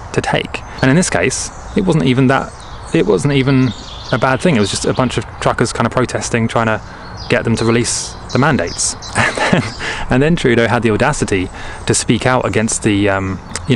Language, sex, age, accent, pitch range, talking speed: English, male, 20-39, British, 100-125 Hz, 210 wpm